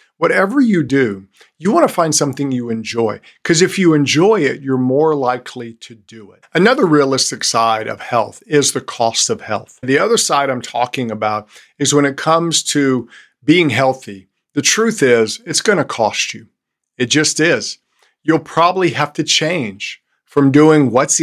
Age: 50-69